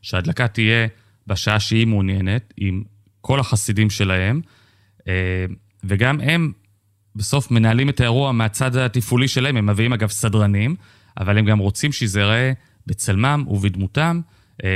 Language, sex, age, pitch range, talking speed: Hebrew, male, 30-49, 100-125 Hz, 120 wpm